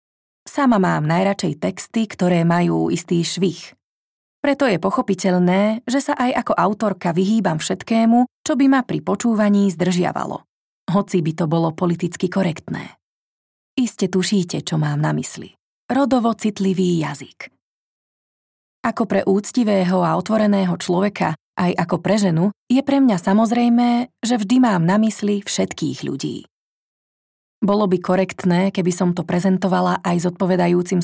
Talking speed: 135 wpm